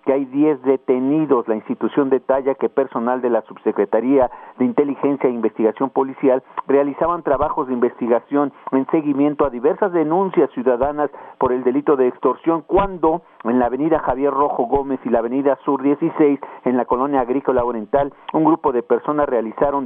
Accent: Mexican